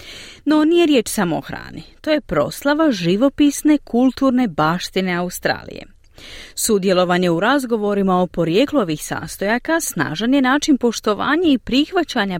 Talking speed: 125 wpm